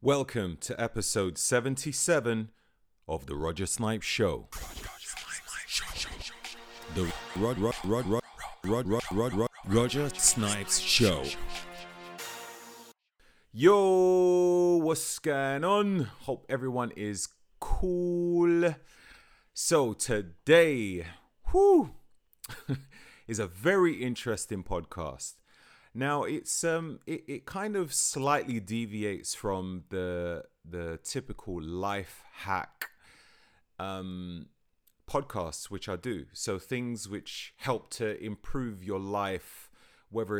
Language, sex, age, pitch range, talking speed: English, male, 30-49, 90-135 Hz, 100 wpm